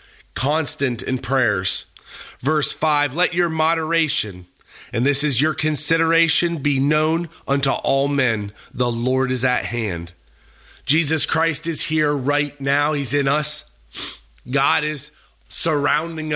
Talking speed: 130 wpm